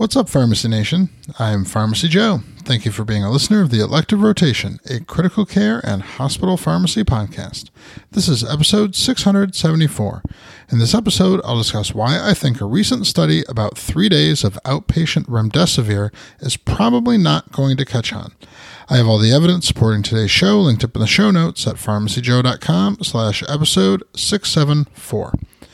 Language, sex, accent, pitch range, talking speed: English, male, American, 115-180 Hz, 165 wpm